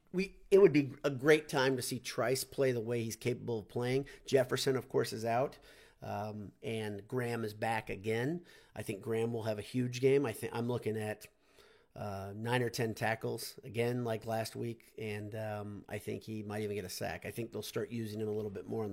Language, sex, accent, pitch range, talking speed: English, male, American, 110-130 Hz, 225 wpm